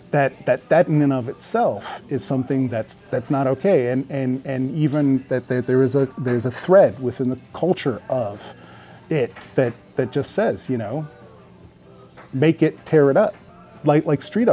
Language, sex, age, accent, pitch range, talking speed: English, male, 30-49, American, 125-150 Hz, 180 wpm